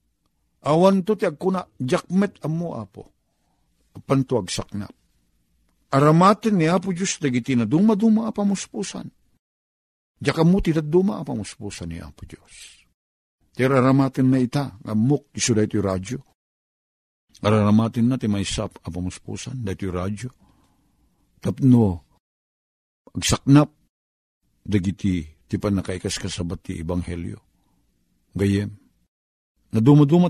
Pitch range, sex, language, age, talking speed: 90-130 Hz, male, Filipino, 50-69, 100 wpm